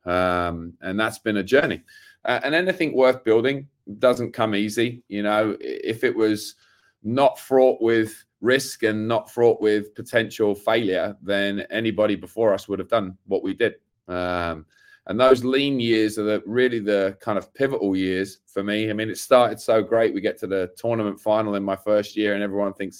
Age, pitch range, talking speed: 20-39, 95-110 Hz, 185 wpm